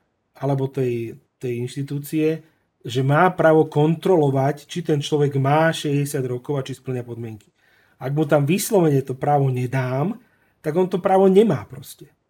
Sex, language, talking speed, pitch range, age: male, Slovak, 150 wpm, 125-155 Hz, 40-59